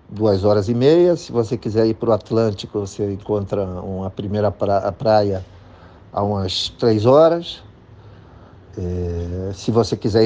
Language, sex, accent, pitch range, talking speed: Portuguese, male, Brazilian, 95-115 Hz, 135 wpm